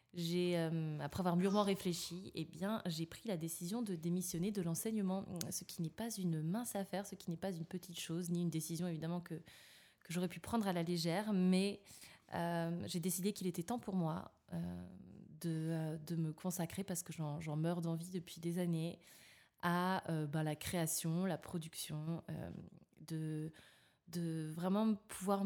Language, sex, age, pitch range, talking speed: French, female, 20-39, 160-190 Hz, 185 wpm